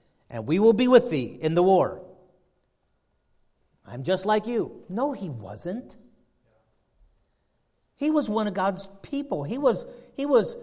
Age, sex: 50-69, male